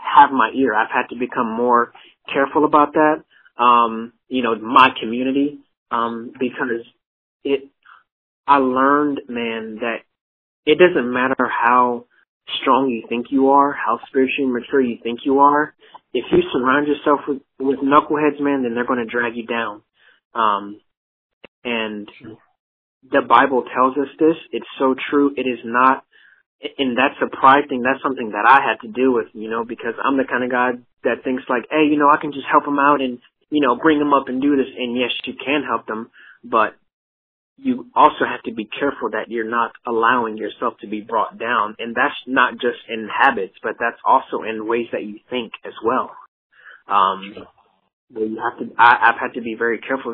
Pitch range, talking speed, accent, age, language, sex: 115-140 Hz, 190 wpm, American, 30-49, English, male